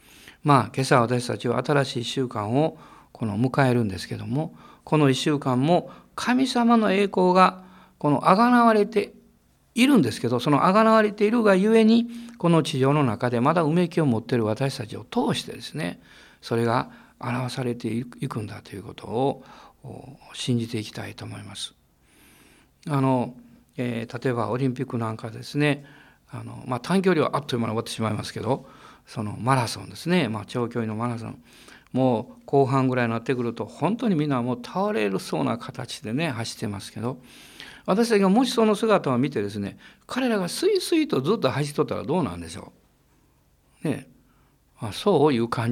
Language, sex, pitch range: Japanese, male, 115-180 Hz